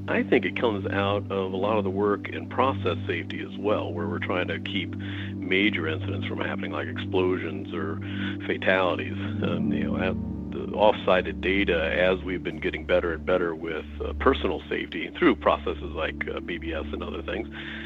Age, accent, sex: 50-69, American, male